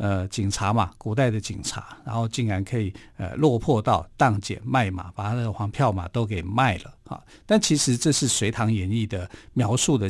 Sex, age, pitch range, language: male, 50-69, 105-140 Hz, Chinese